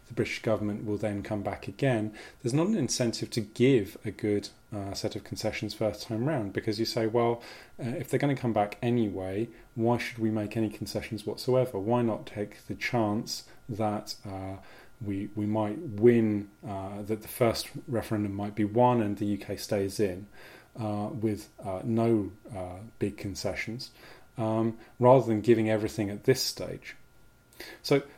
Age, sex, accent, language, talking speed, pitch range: 30-49, male, British, English, 175 wpm, 105-125 Hz